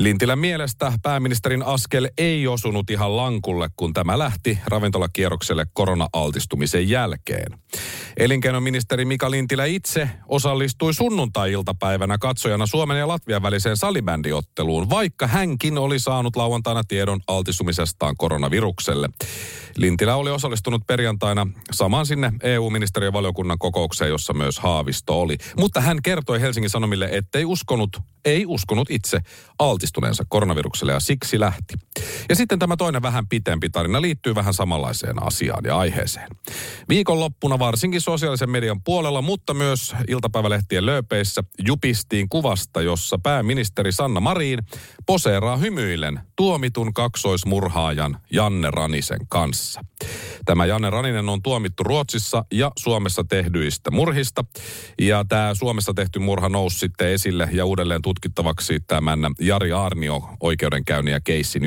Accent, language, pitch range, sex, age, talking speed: native, Finnish, 95-130 Hz, male, 40-59, 120 wpm